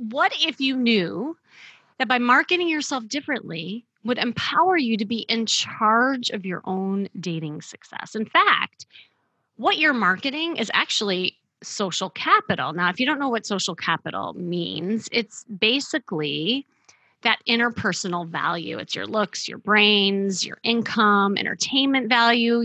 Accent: American